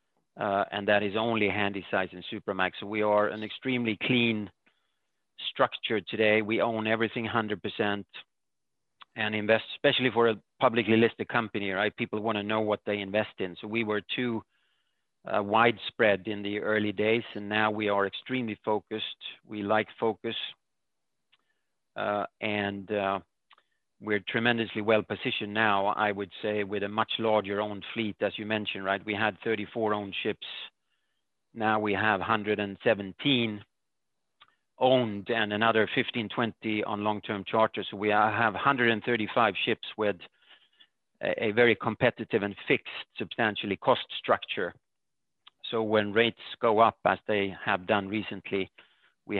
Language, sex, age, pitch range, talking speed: English, male, 40-59, 100-115 Hz, 145 wpm